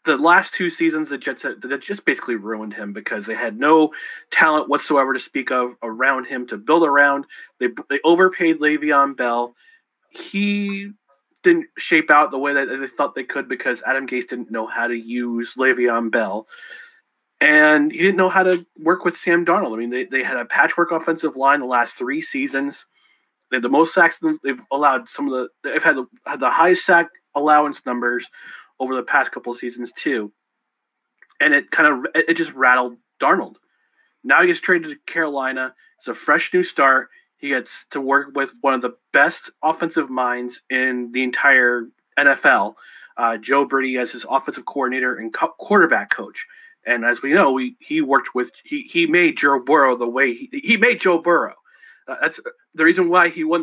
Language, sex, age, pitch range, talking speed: English, male, 30-49, 130-175 Hz, 190 wpm